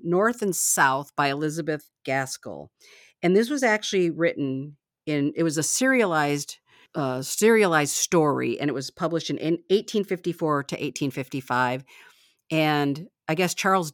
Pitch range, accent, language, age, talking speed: 135-170 Hz, American, English, 50-69, 135 wpm